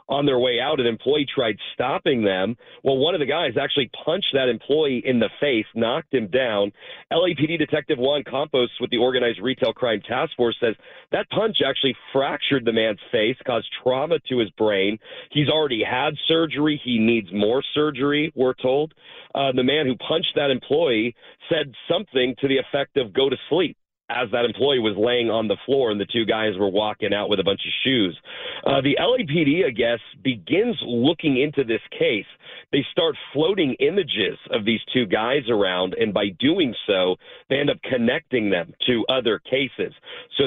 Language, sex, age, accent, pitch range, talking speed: English, male, 40-59, American, 115-150 Hz, 185 wpm